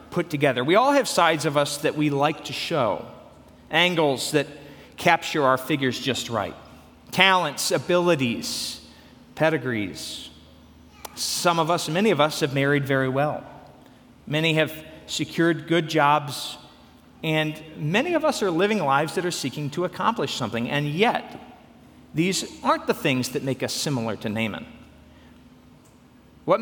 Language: English